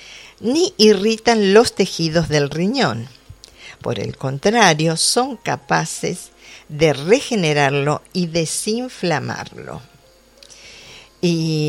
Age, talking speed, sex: 50-69, 80 wpm, female